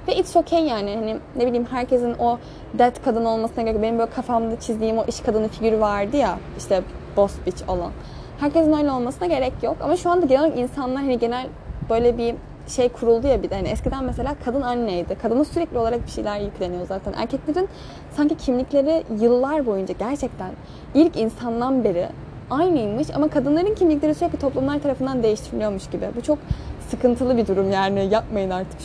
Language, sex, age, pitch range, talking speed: Turkish, female, 10-29, 200-275 Hz, 175 wpm